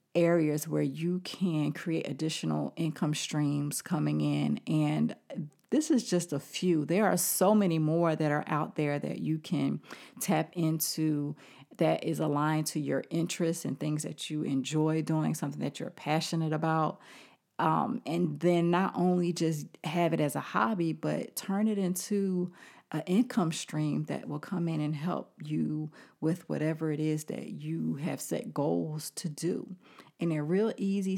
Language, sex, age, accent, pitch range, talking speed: English, female, 40-59, American, 150-175 Hz, 165 wpm